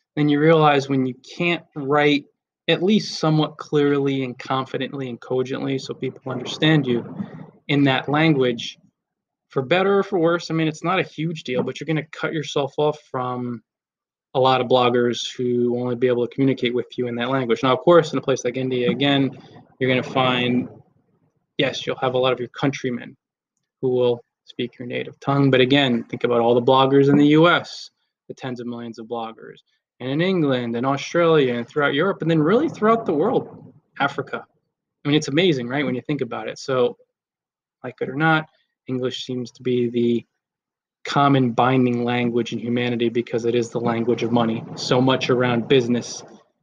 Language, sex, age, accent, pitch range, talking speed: English, male, 20-39, American, 125-155 Hz, 195 wpm